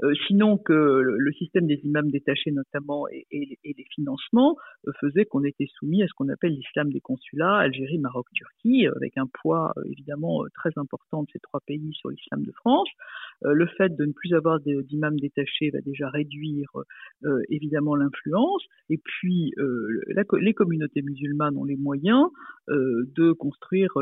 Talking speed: 155 wpm